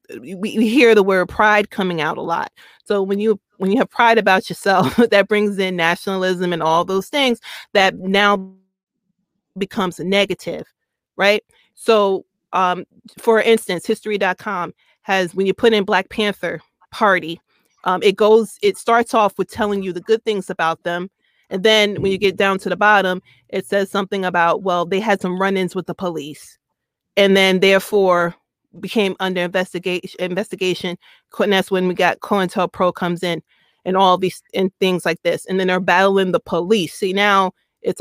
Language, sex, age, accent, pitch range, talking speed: English, female, 30-49, American, 185-215 Hz, 175 wpm